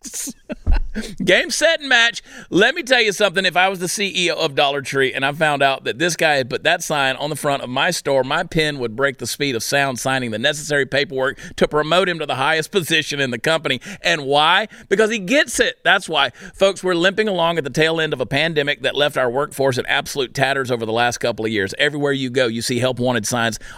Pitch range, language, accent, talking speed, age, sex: 135-185 Hz, English, American, 240 wpm, 40-59, male